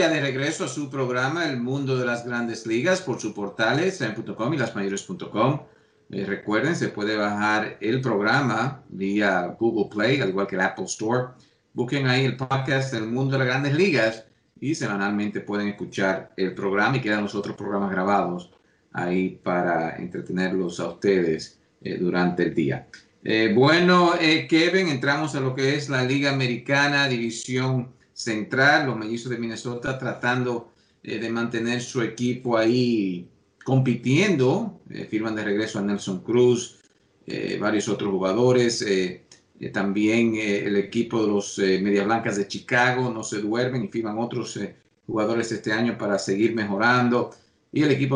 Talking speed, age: 160 wpm, 50-69